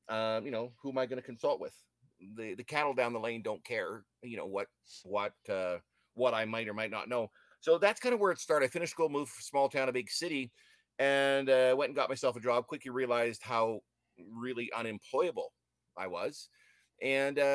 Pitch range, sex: 115-140 Hz, male